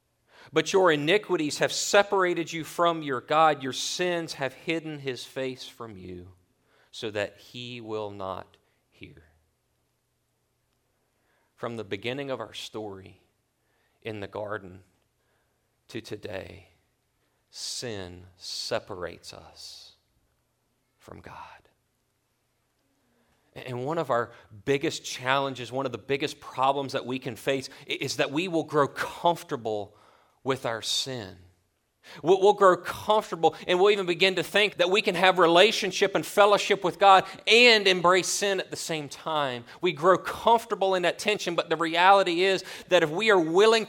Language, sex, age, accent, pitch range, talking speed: English, male, 40-59, American, 120-190 Hz, 140 wpm